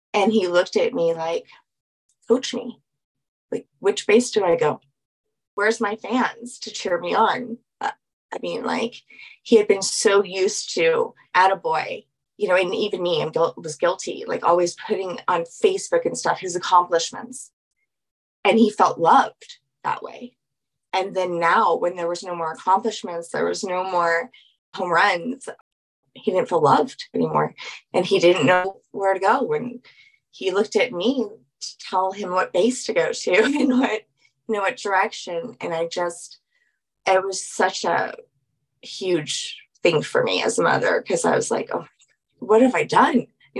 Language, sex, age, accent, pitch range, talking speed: English, female, 20-39, American, 185-270 Hz, 175 wpm